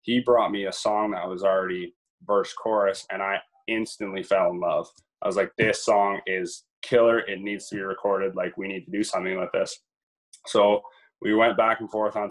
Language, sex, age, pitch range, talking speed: English, male, 20-39, 95-110 Hz, 210 wpm